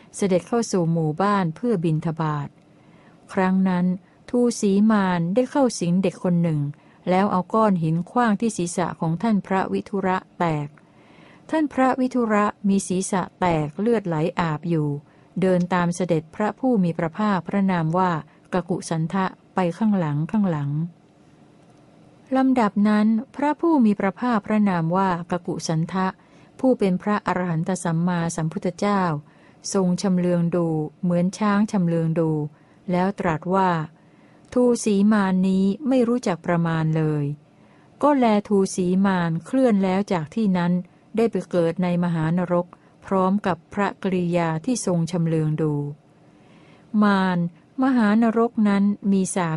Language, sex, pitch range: Thai, female, 170-205 Hz